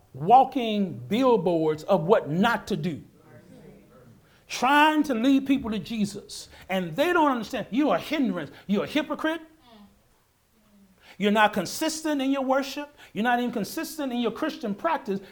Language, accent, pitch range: English, American, 170-240 Hz